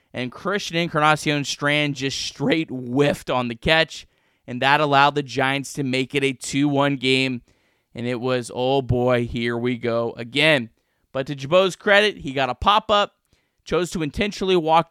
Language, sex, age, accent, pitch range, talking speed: English, male, 20-39, American, 135-165 Hz, 165 wpm